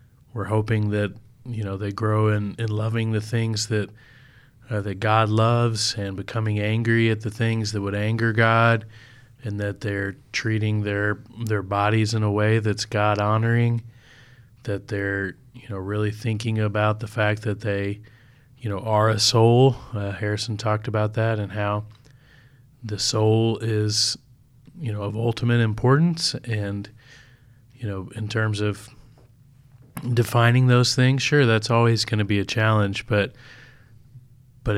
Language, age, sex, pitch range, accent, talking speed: English, 30-49, male, 105-120 Hz, American, 155 wpm